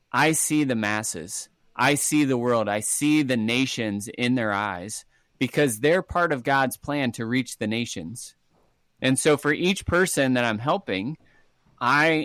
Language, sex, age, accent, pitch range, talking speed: English, male, 30-49, American, 120-150 Hz, 165 wpm